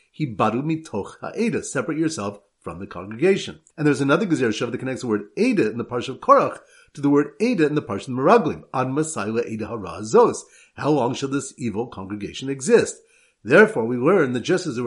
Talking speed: 175 wpm